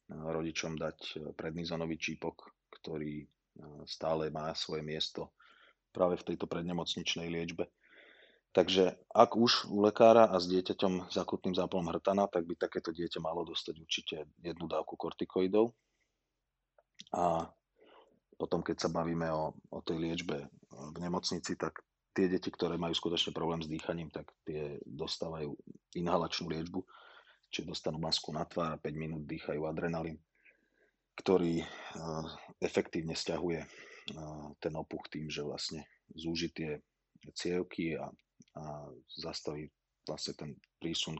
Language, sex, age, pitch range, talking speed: Slovak, male, 30-49, 80-90 Hz, 125 wpm